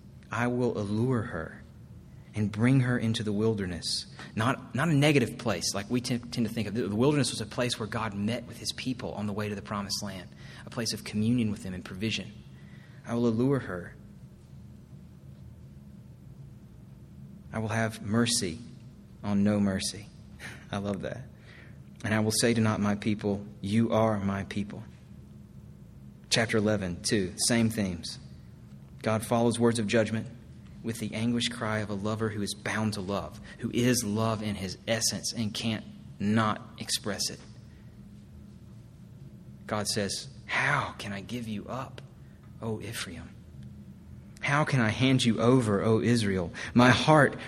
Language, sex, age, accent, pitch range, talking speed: English, male, 30-49, American, 100-120 Hz, 160 wpm